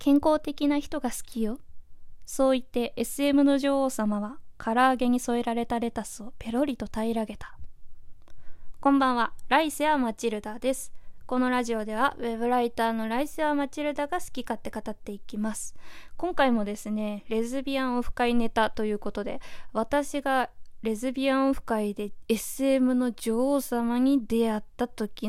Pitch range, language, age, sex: 220-280 Hz, Japanese, 20-39, female